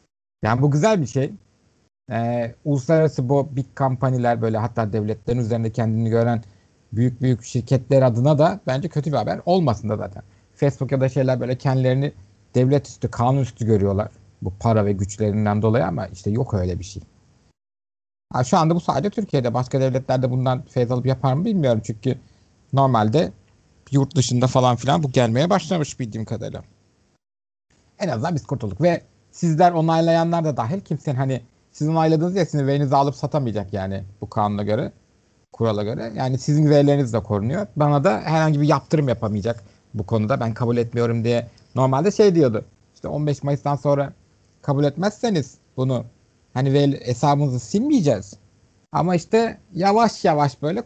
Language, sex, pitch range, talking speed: Turkish, male, 110-150 Hz, 155 wpm